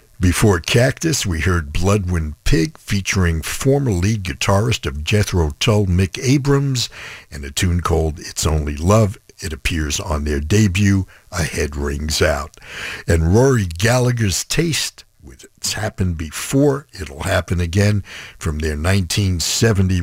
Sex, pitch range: male, 80-110 Hz